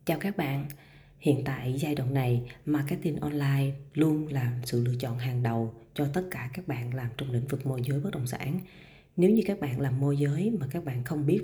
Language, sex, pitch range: Vietnamese, female, 120-155 Hz